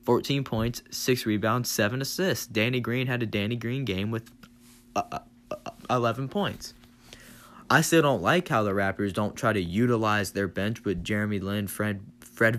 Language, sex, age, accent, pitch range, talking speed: English, male, 20-39, American, 110-135 Hz, 155 wpm